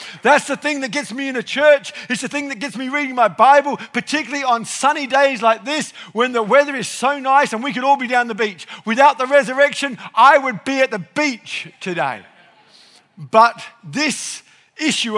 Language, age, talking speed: English, 50-69, 200 wpm